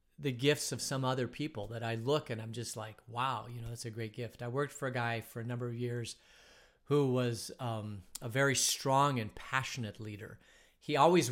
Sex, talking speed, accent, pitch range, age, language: male, 215 wpm, American, 115-135 Hz, 40-59, English